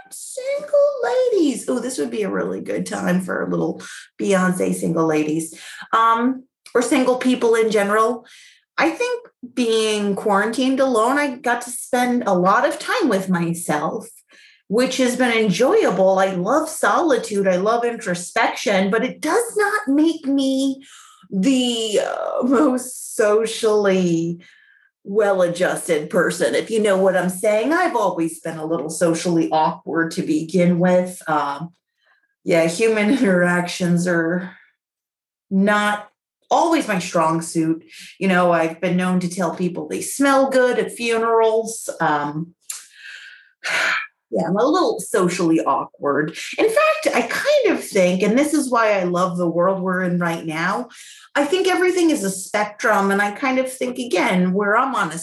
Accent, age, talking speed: American, 30-49, 150 wpm